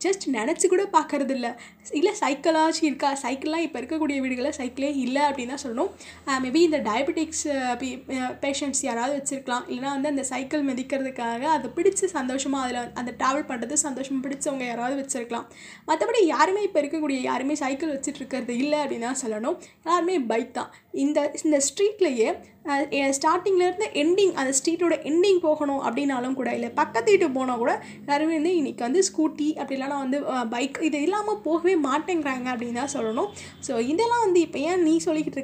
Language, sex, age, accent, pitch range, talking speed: Tamil, female, 20-39, native, 245-315 Hz, 155 wpm